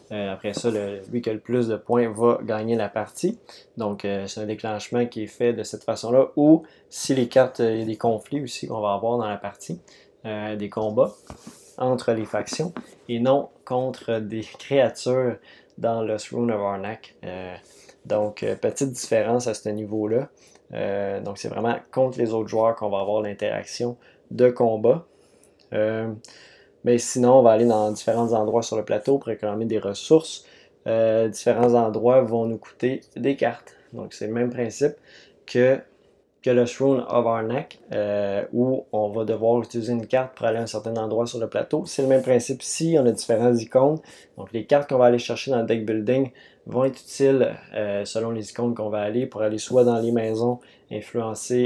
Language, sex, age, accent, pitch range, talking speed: French, male, 20-39, Canadian, 110-125 Hz, 200 wpm